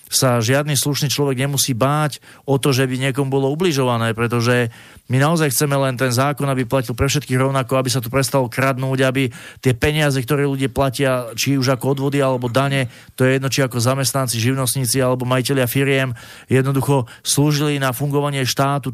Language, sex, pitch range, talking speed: Slovak, male, 125-145 Hz, 180 wpm